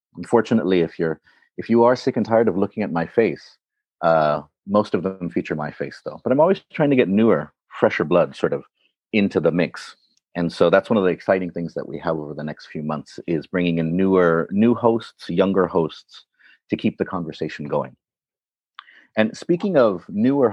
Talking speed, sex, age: 200 wpm, male, 40-59